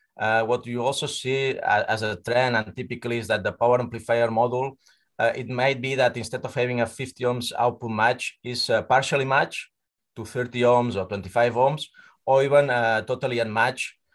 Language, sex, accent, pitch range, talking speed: English, male, Spanish, 115-135 Hz, 185 wpm